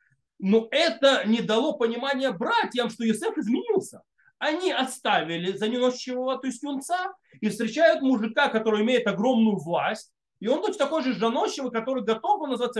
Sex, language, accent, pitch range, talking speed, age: male, Russian, native, 195-275 Hz, 150 wpm, 30-49